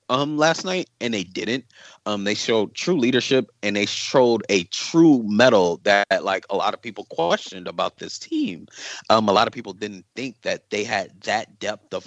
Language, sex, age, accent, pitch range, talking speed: English, male, 30-49, American, 100-135 Hz, 200 wpm